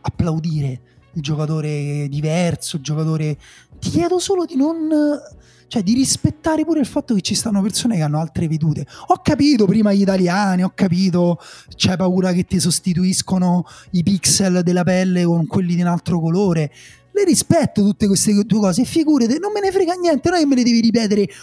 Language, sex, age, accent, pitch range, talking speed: Italian, male, 30-49, native, 175-235 Hz, 190 wpm